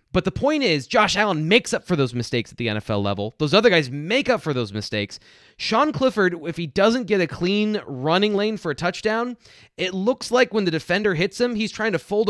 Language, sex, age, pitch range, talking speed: English, male, 30-49, 140-205 Hz, 235 wpm